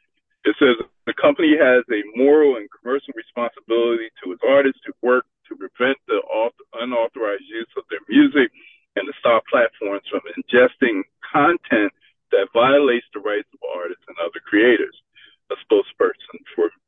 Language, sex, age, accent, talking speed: English, male, 50-69, American, 150 wpm